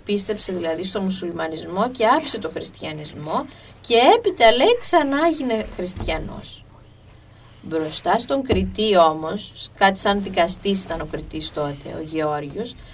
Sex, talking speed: female, 120 wpm